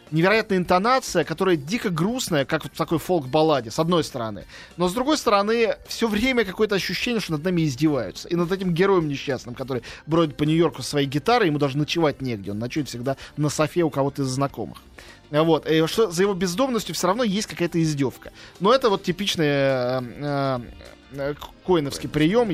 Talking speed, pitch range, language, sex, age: 280 wpm, 140-180 Hz, Russian, male, 20-39